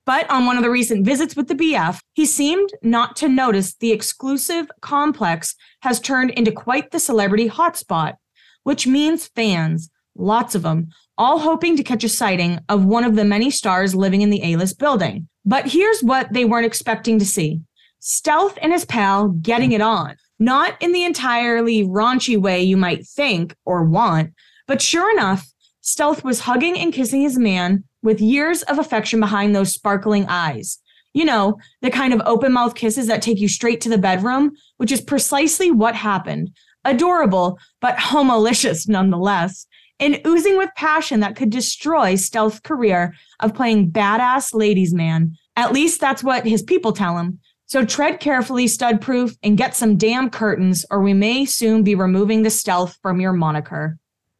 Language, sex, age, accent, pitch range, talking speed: English, female, 20-39, American, 195-270 Hz, 175 wpm